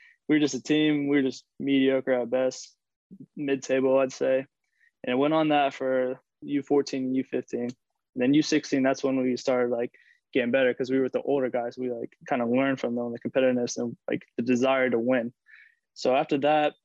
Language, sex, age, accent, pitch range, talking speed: English, male, 20-39, American, 120-135 Hz, 210 wpm